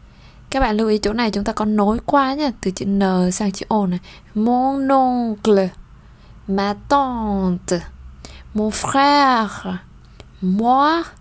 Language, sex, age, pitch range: Vietnamese, female, 20-39, 185-250 Hz